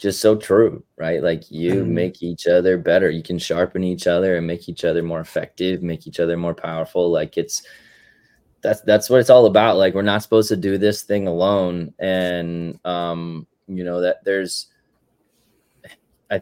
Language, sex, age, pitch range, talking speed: English, male, 20-39, 85-100 Hz, 185 wpm